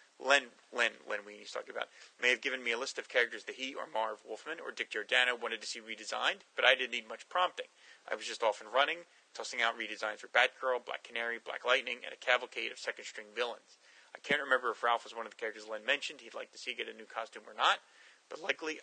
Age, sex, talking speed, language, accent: 30-49, male, 250 wpm, English, American